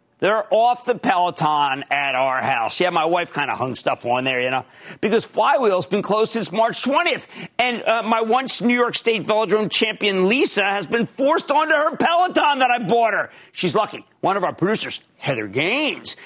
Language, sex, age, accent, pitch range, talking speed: English, male, 50-69, American, 155-235 Hz, 190 wpm